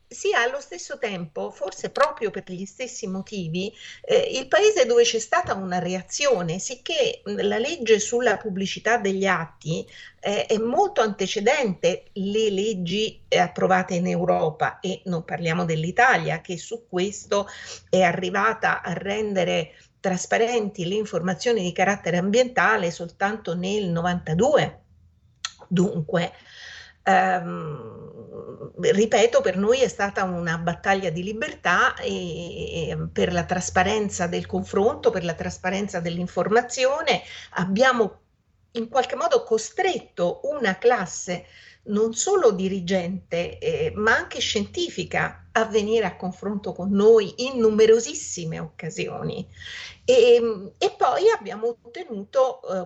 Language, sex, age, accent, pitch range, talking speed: Italian, female, 50-69, native, 180-245 Hz, 120 wpm